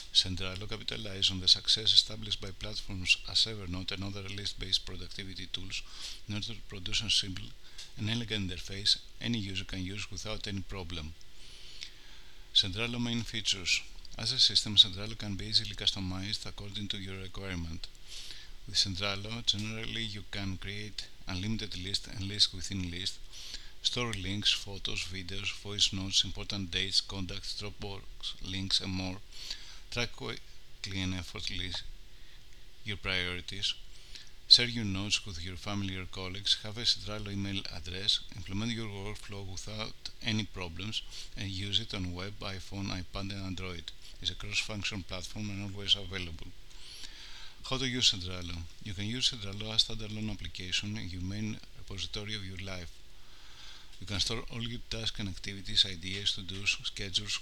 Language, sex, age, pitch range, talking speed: English, male, 50-69, 95-105 Hz, 150 wpm